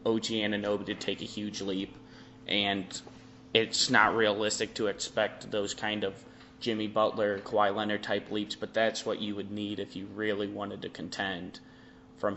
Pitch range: 105-115 Hz